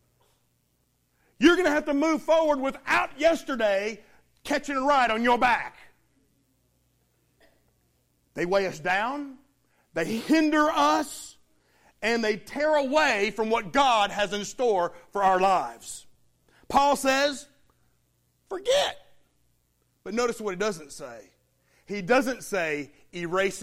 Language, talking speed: English, 120 wpm